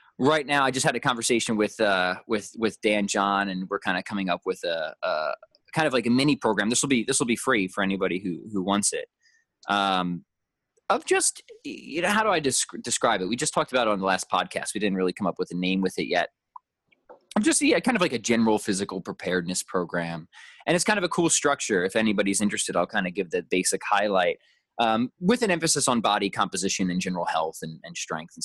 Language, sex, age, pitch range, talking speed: English, male, 20-39, 95-155 Hz, 240 wpm